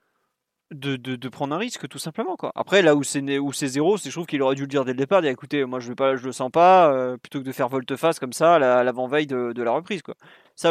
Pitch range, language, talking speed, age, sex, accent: 130-160 Hz, French, 295 wpm, 30-49, male, French